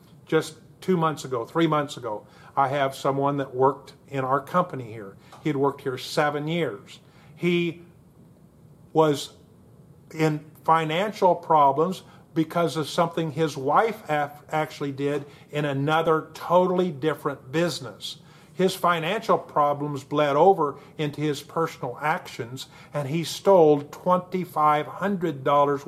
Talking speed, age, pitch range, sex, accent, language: 120 wpm, 50-69, 135-160 Hz, male, American, English